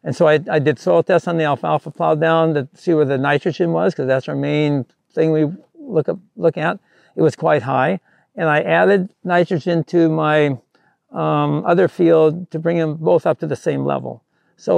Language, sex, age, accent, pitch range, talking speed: English, male, 60-79, American, 145-170 Hz, 205 wpm